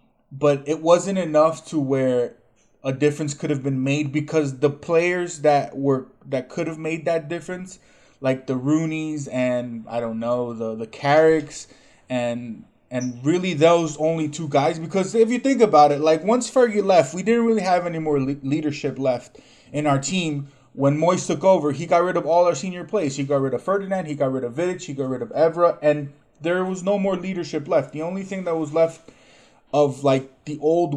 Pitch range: 135-170 Hz